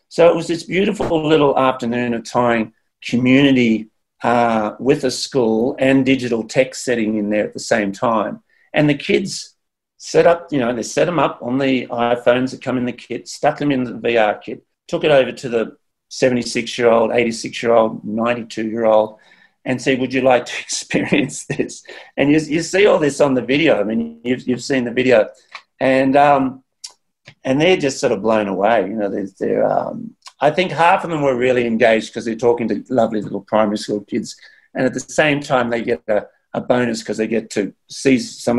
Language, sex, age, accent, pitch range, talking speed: English, male, 40-59, Australian, 115-135 Hz, 200 wpm